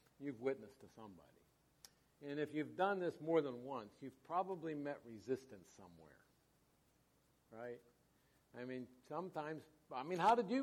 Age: 60-79